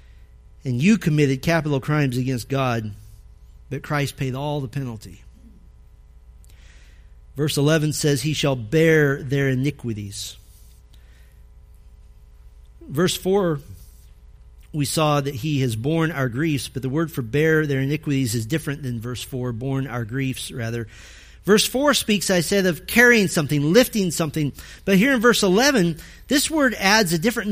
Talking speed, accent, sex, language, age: 145 wpm, American, male, English, 40-59